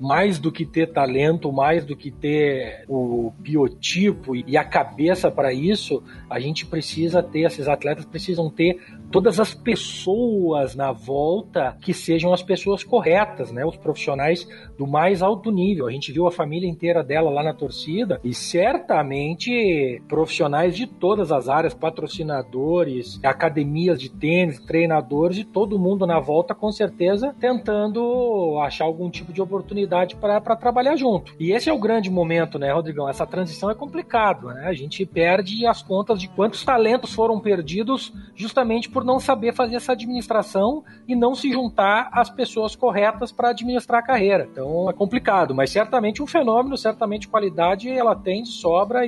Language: Portuguese